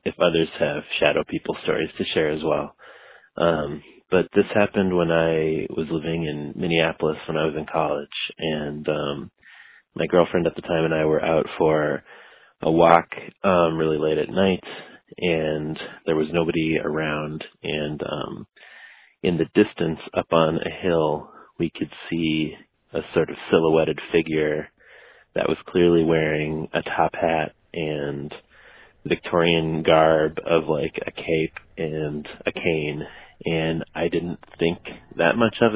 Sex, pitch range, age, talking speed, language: male, 80-85 Hz, 30-49, 150 wpm, English